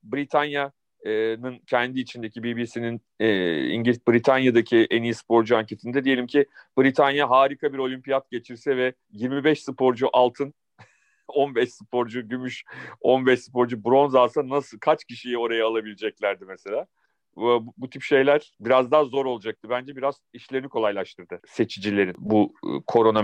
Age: 40-59